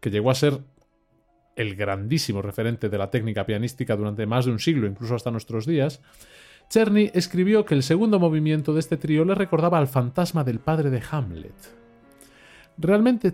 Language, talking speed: Spanish, 170 wpm